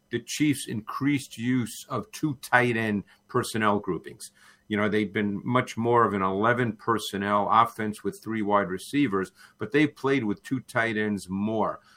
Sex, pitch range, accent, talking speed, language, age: male, 105-125 Hz, American, 165 wpm, English, 50-69